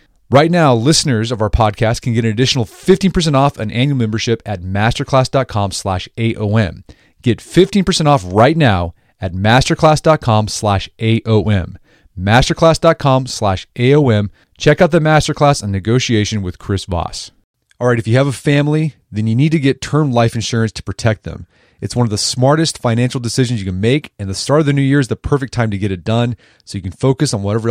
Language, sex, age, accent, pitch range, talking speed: English, male, 30-49, American, 105-140 Hz, 195 wpm